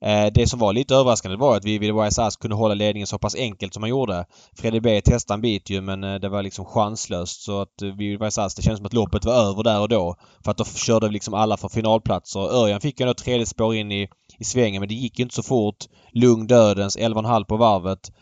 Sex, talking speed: male, 245 wpm